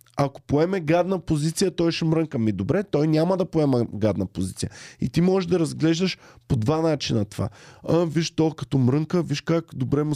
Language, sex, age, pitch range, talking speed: Bulgarian, male, 20-39, 120-160 Hz, 195 wpm